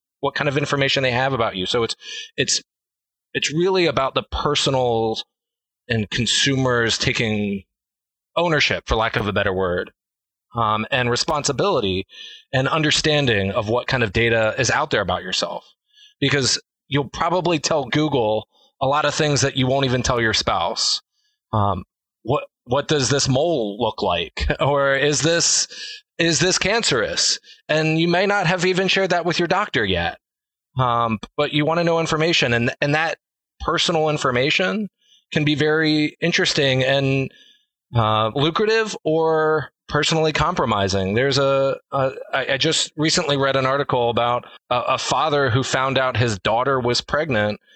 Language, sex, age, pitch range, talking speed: English, male, 20-39, 120-165 Hz, 160 wpm